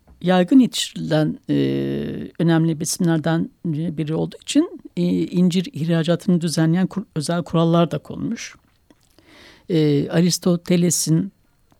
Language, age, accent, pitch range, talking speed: Turkish, 60-79, native, 150-195 Hz, 95 wpm